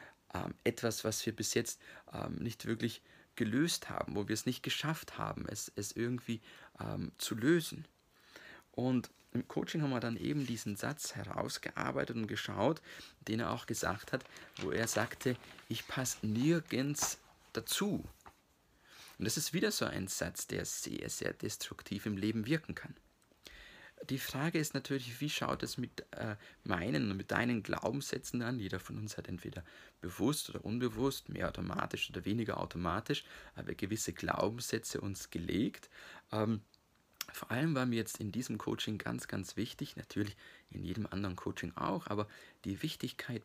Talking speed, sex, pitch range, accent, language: 160 wpm, male, 105-135 Hz, German, German